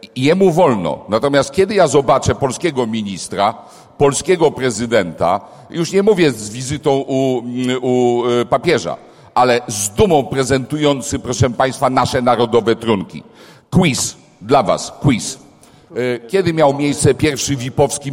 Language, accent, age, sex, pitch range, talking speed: Polish, native, 50-69, male, 120-150 Hz, 125 wpm